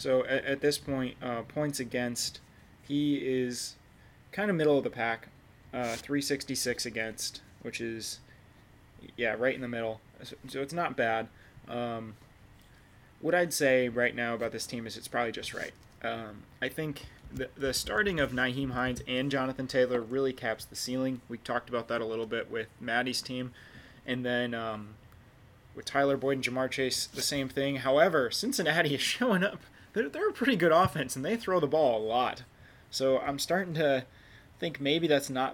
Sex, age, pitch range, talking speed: male, 20-39, 115-140 Hz, 180 wpm